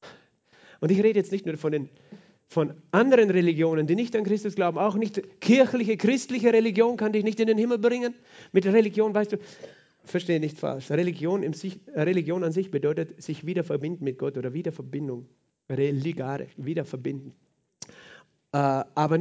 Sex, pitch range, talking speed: male, 160-200 Hz, 165 wpm